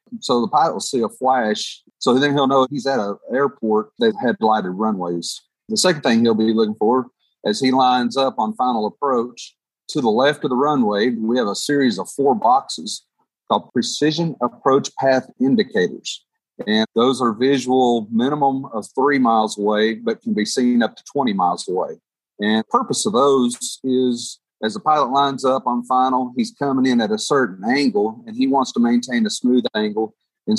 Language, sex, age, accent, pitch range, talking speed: English, male, 40-59, American, 115-180 Hz, 190 wpm